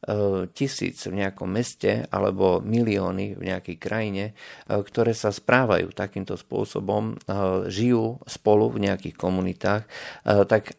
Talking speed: 110 wpm